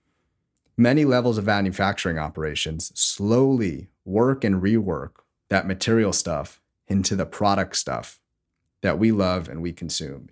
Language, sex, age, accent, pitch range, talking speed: English, male, 30-49, American, 85-110 Hz, 130 wpm